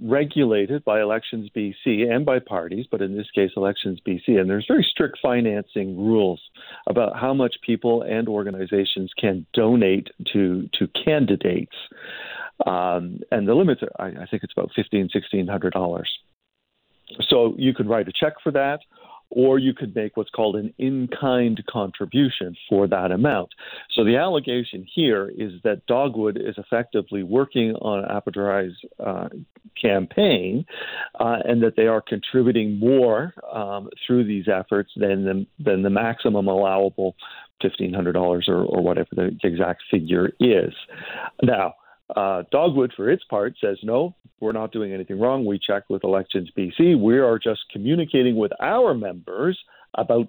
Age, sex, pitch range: 50-69, male, 95-120 Hz